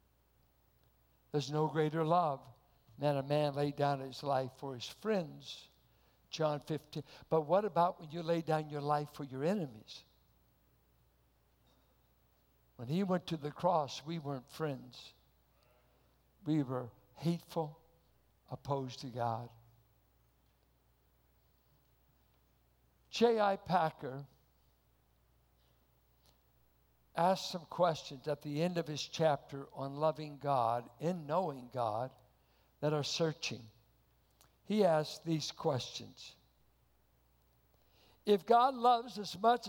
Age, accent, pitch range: 60-79, American, 115-185 Hz